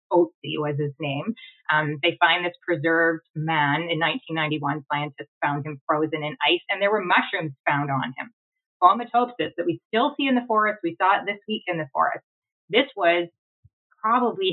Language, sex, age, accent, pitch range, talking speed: English, female, 20-39, American, 155-200 Hz, 180 wpm